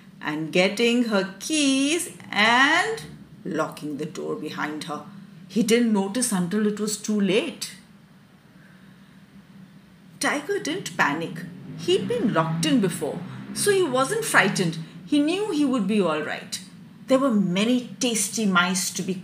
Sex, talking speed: female, 135 wpm